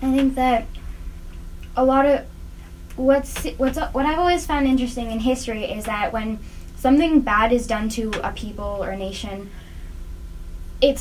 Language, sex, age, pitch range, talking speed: English, female, 10-29, 195-260 Hz, 160 wpm